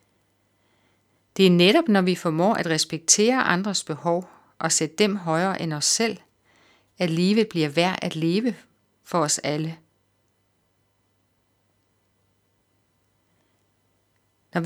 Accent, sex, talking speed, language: native, female, 110 wpm, Danish